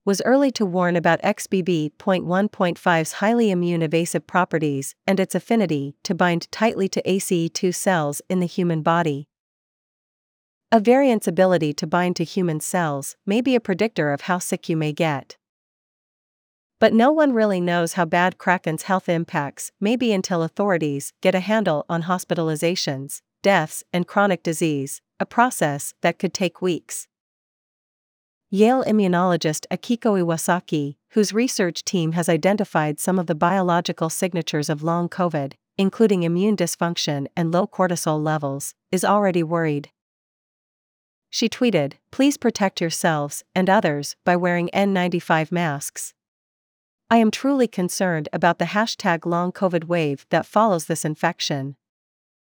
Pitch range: 165-195 Hz